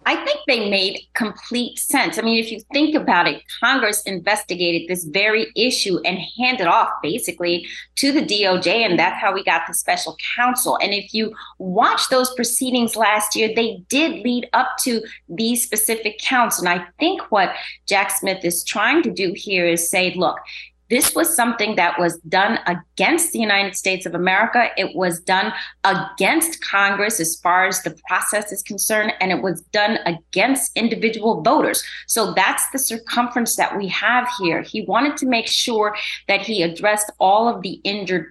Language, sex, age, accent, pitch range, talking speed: English, female, 30-49, American, 190-250 Hz, 180 wpm